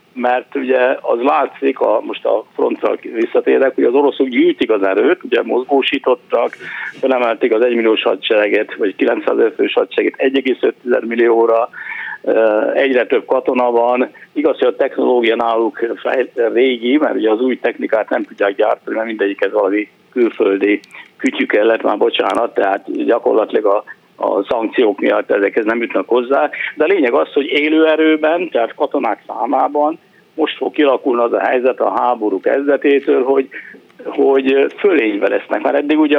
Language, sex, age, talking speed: Hungarian, male, 60-79, 145 wpm